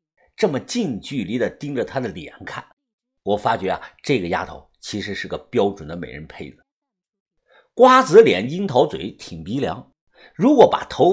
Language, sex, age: Chinese, male, 50-69